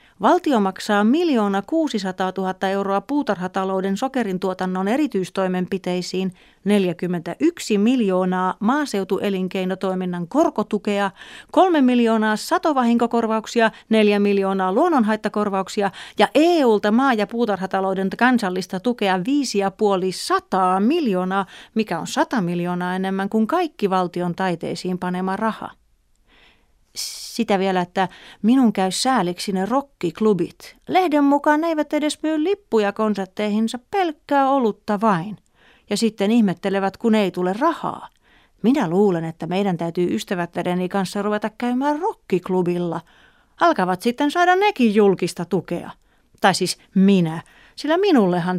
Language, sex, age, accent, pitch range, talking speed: Finnish, female, 30-49, native, 185-245 Hz, 110 wpm